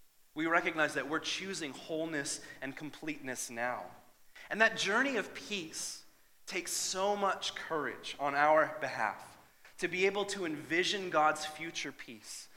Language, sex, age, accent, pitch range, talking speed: English, male, 30-49, American, 125-160 Hz, 140 wpm